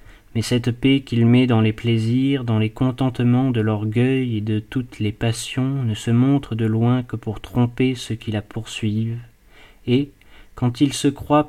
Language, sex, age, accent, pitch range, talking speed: French, male, 30-49, French, 110-130 Hz, 185 wpm